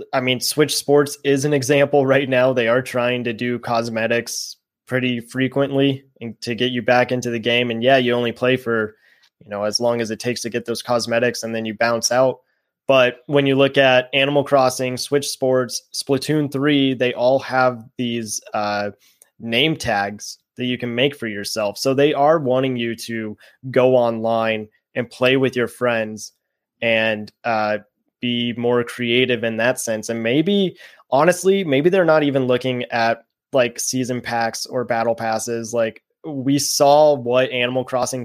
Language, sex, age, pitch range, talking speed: English, male, 20-39, 115-135 Hz, 175 wpm